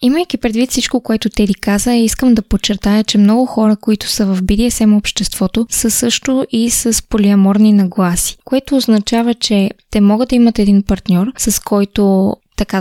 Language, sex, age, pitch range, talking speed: Bulgarian, female, 20-39, 200-245 Hz, 165 wpm